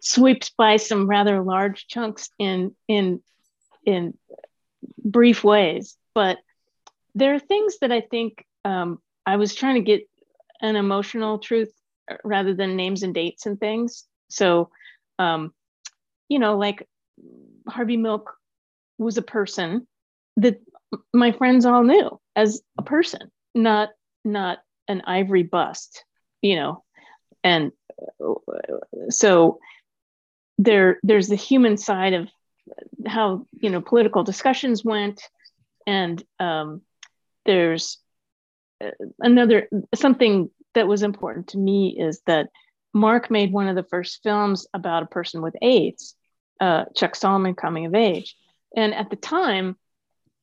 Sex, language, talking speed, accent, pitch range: female, English, 125 wpm, American, 190-240 Hz